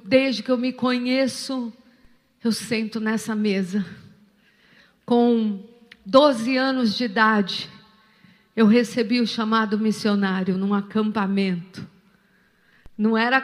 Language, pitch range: Portuguese, 210-255 Hz